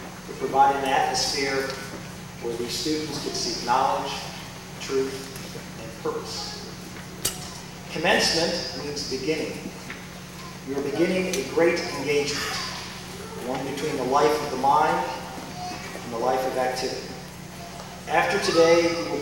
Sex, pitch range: male, 135-170 Hz